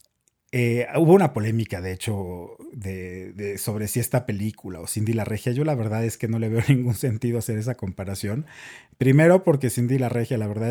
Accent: Mexican